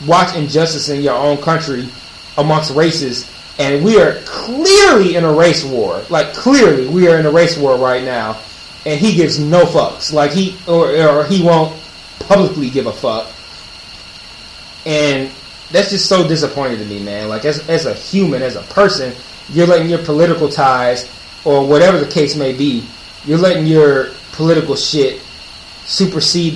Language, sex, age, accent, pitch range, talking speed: English, male, 30-49, American, 135-175 Hz, 165 wpm